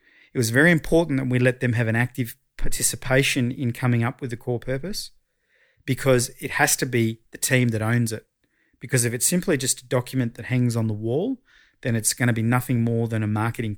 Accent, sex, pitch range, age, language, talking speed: Australian, male, 115-135 Hz, 30-49, English, 220 wpm